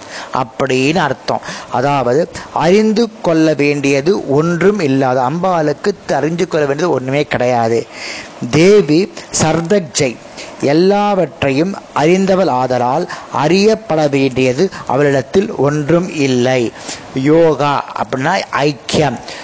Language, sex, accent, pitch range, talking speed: Tamil, male, native, 135-180 Hz, 80 wpm